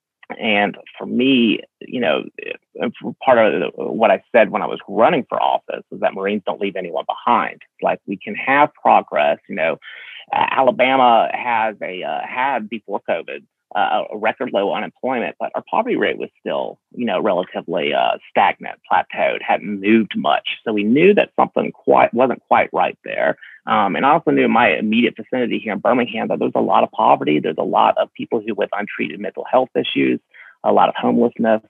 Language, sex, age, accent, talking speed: English, male, 30-49, American, 190 wpm